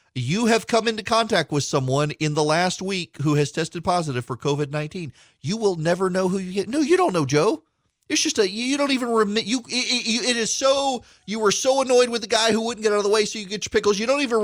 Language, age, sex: English, 40-59, male